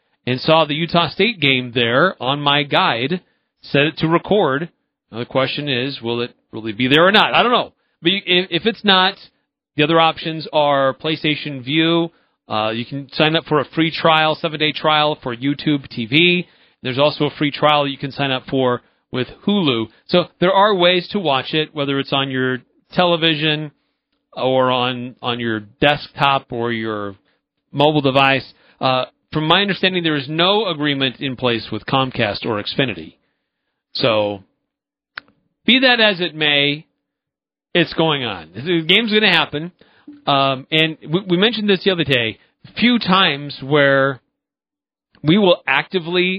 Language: English